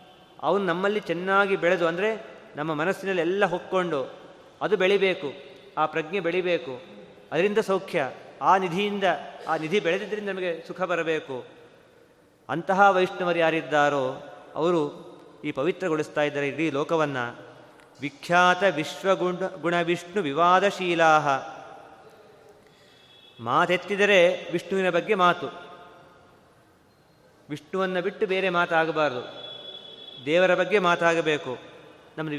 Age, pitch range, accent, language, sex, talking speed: 30-49, 155-190 Hz, native, Kannada, male, 90 wpm